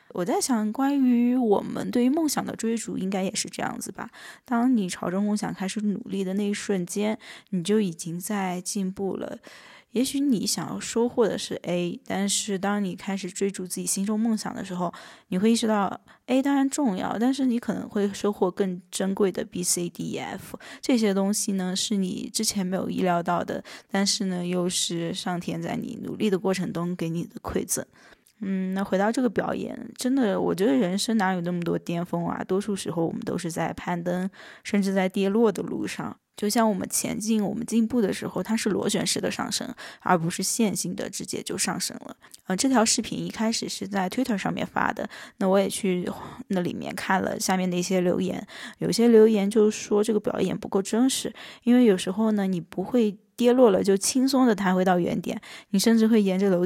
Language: Chinese